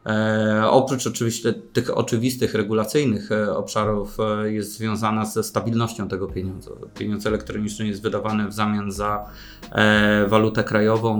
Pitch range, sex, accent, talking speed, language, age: 105-115 Hz, male, native, 135 wpm, Polish, 20-39